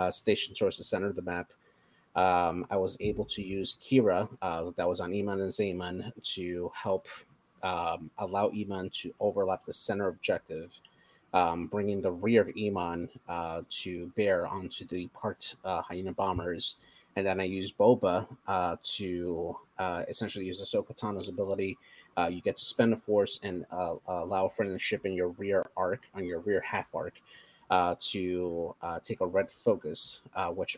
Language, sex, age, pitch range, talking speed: English, male, 30-49, 90-100 Hz, 175 wpm